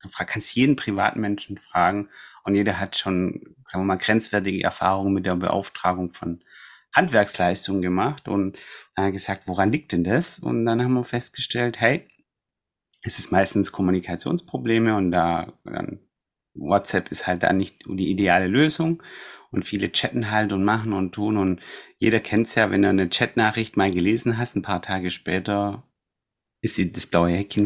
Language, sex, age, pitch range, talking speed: German, male, 30-49, 95-120 Hz, 165 wpm